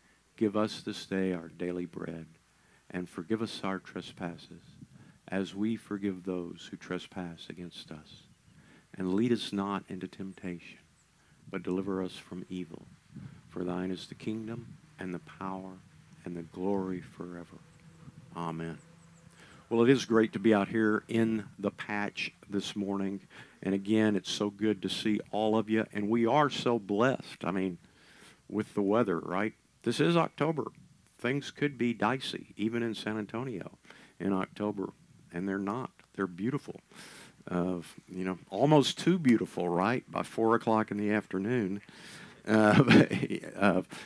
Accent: American